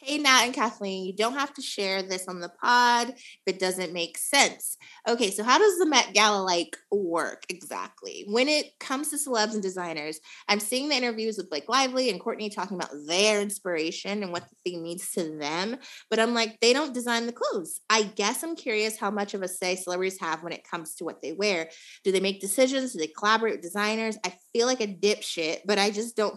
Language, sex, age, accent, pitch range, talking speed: English, female, 20-39, American, 175-230 Hz, 220 wpm